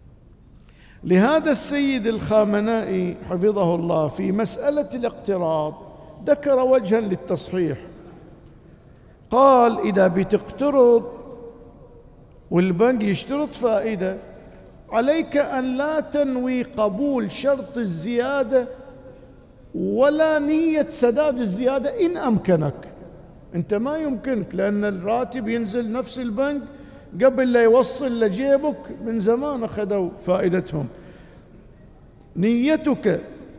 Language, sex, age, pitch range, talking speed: Arabic, male, 50-69, 190-260 Hz, 85 wpm